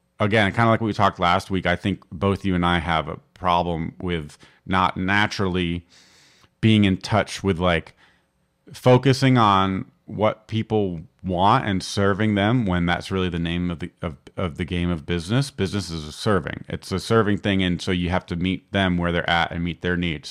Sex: male